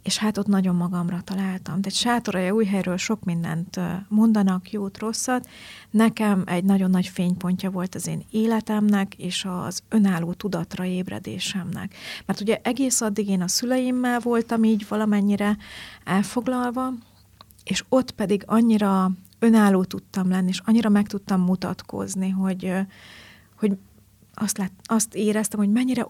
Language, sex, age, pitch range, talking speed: Hungarian, female, 40-59, 185-215 Hz, 140 wpm